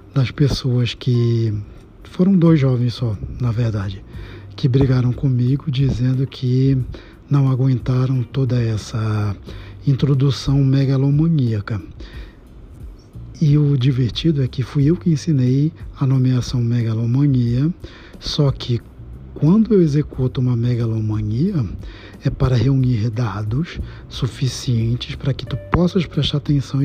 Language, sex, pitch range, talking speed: Portuguese, male, 115-140 Hz, 110 wpm